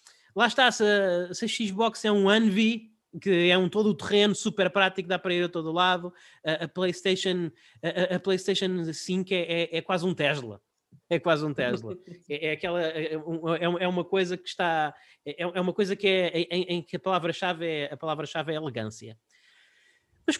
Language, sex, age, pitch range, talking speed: Portuguese, male, 20-39, 155-215 Hz, 170 wpm